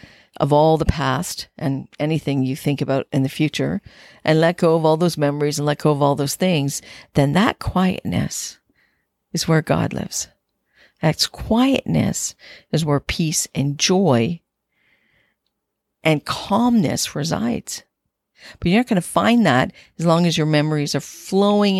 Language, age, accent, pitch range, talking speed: English, 50-69, American, 140-170 Hz, 155 wpm